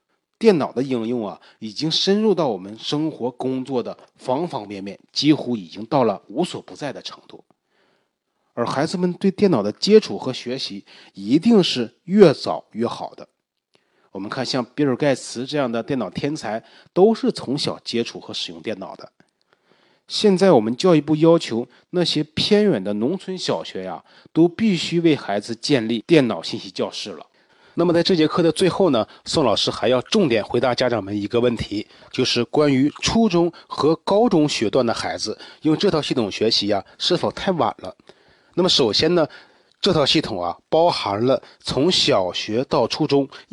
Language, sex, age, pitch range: Chinese, male, 30-49, 120-175 Hz